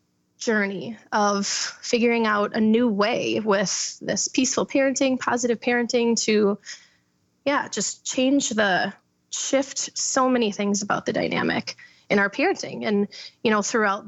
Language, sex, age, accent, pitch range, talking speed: English, female, 20-39, American, 205-250 Hz, 135 wpm